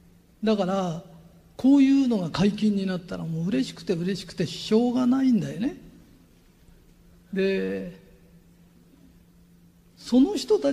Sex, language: male, Japanese